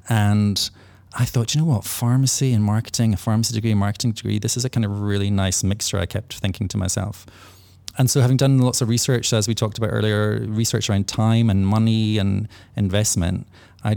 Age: 20-39